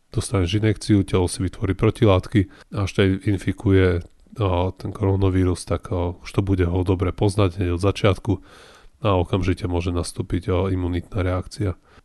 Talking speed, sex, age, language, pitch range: 150 wpm, male, 30-49, Slovak, 90-105 Hz